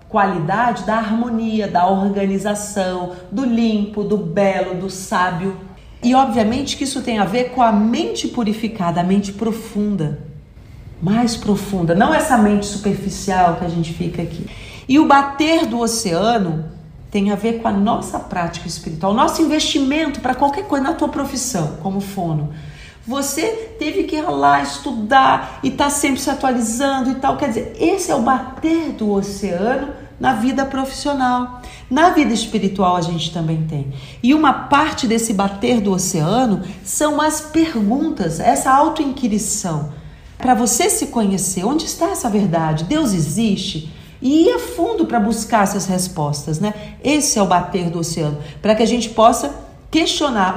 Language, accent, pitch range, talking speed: Portuguese, Brazilian, 180-265 Hz, 160 wpm